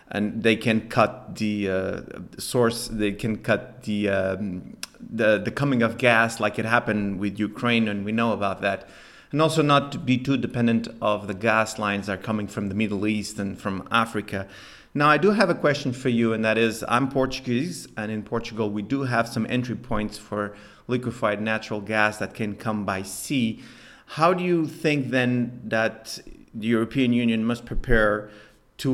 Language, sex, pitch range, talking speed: English, male, 105-125 Hz, 190 wpm